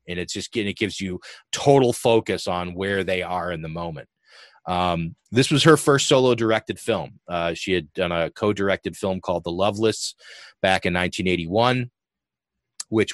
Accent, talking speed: American, 175 wpm